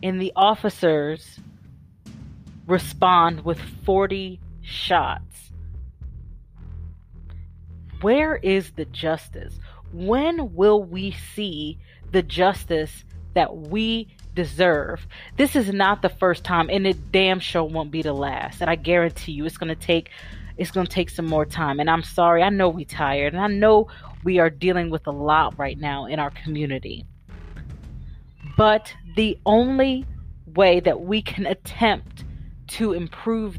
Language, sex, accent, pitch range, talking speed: English, female, American, 150-195 Hz, 140 wpm